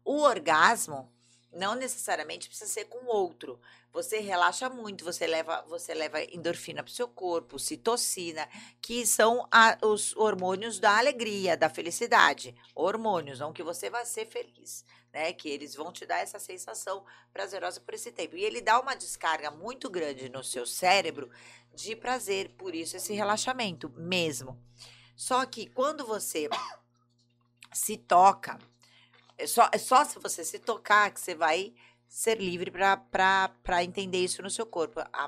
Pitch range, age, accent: 155-235 Hz, 40-59, Brazilian